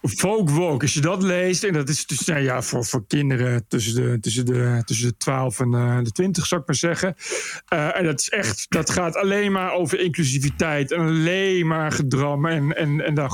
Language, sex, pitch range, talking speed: Dutch, male, 140-190 Hz, 215 wpm